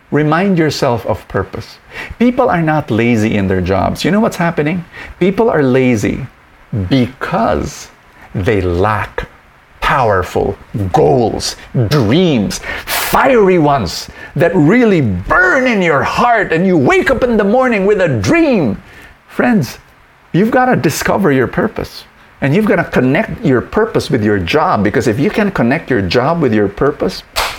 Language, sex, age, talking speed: English, male, 50-69, 145 wpm